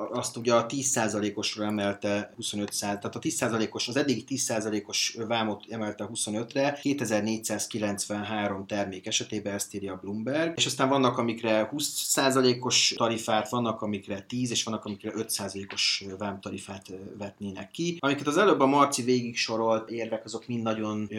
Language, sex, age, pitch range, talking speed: Hungarian, male, 30-49, 105-115 Hz, 145 wpm